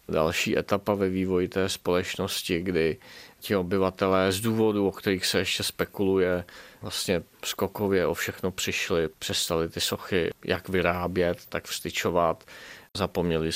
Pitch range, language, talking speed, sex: 85-95 Hz, Czech, 130 wpm, male